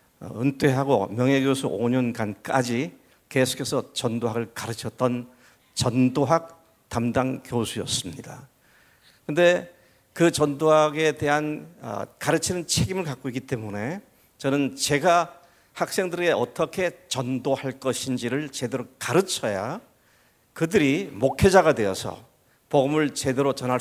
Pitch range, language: 125-160 Hz, Korean